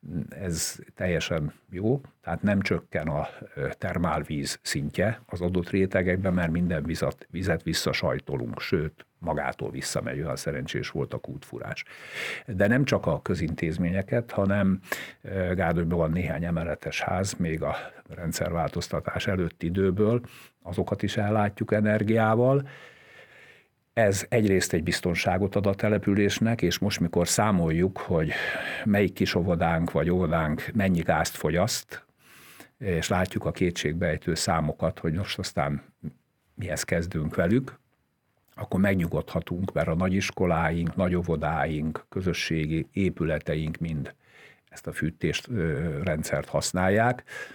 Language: Hungarian